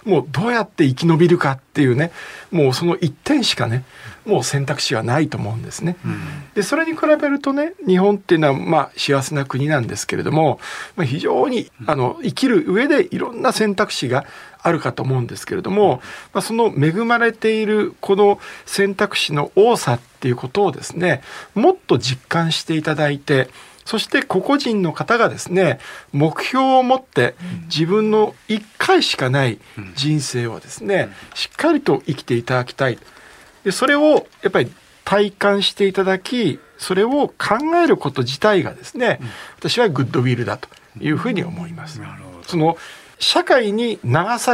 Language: Japanese